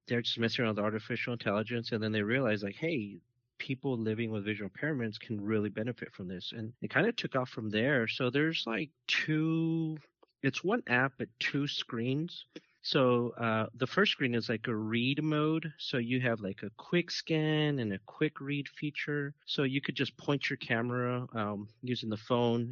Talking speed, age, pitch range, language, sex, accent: 200 wpm, 30-49, 105-135 Hz, English, male, American